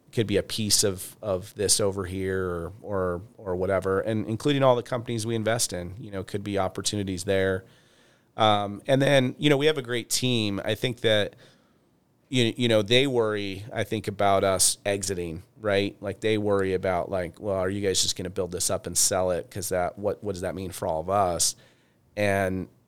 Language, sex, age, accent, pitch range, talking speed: English, male, 30-49, American, 95-110 Hz, 210 wpm